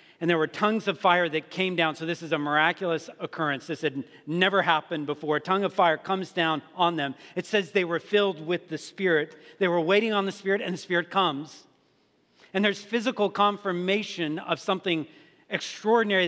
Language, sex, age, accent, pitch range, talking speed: English, male, 40-59, American, 155-190 Hz, 195 wpm